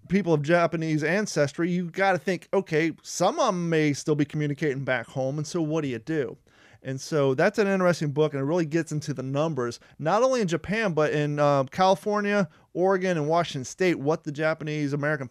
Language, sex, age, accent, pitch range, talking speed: English, male, 30-49, American, 130-160 Hz, 210 wpm